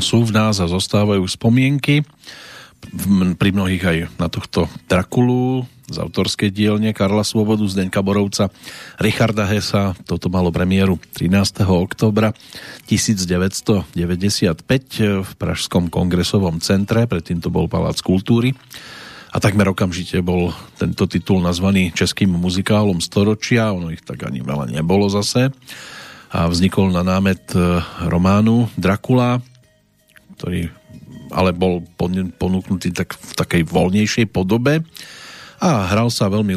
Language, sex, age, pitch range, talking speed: Slovak, male, 40-59, 90-105 Hz, 120 wpm